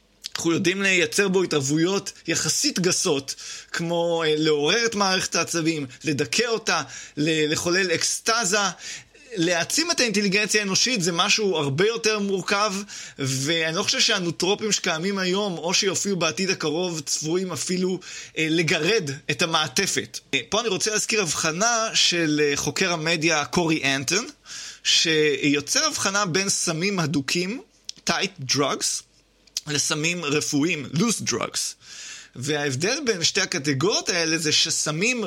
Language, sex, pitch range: Hebrew, male, 150-200 Hz